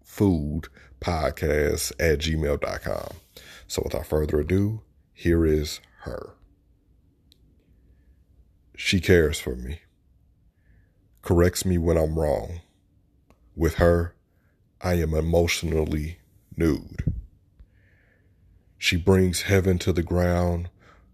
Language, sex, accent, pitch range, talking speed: English, male, American, 80-95 Hz, 90 wpm